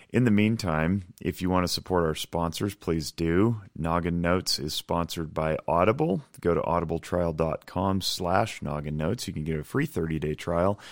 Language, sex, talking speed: English, male, 165 wpm